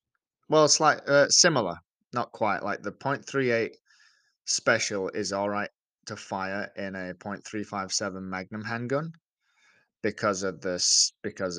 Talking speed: 125 wpm